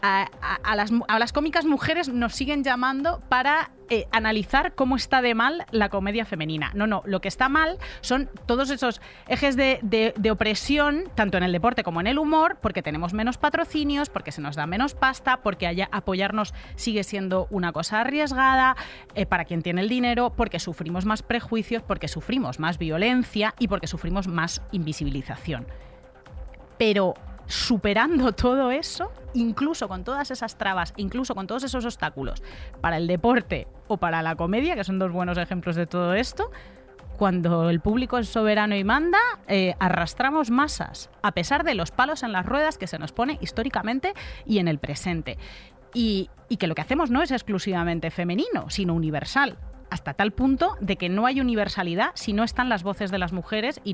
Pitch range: 185-255 Hz